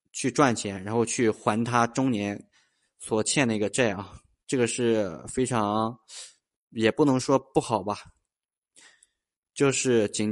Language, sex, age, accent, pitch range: Chinese, male, 20-39, native, 105-130 Hz